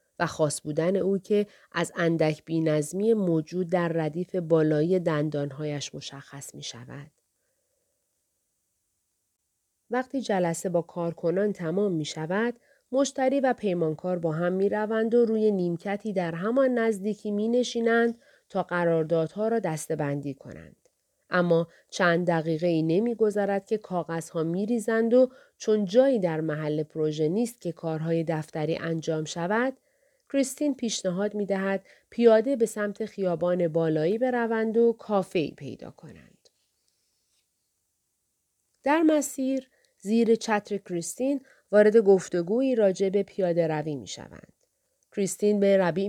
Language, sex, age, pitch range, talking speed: Persian, female, 30-49, 165-225 Hz, 120 wpm